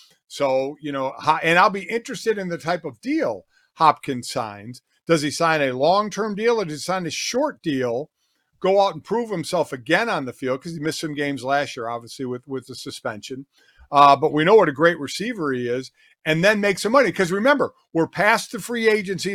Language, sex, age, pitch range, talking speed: English, male, 50-69, 140-180 Hz, 215 wpm